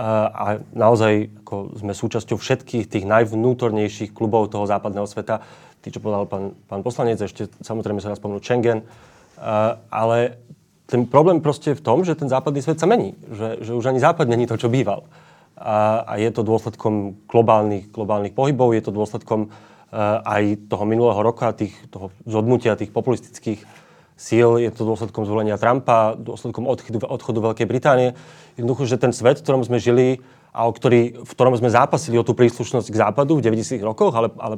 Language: Slovak